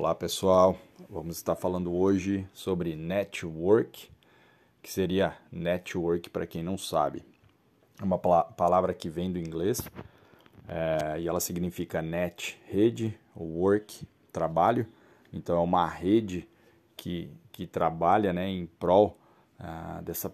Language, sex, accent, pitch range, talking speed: Portuguese, male, Brazilian, 90-105 Hz, 120 wpm